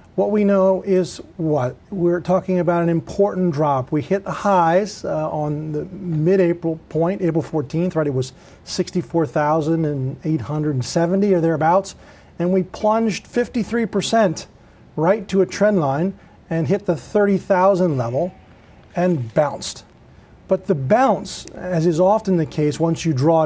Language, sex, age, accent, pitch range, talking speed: English, male, 40-59, American, 155-195 Hz, 140 wpm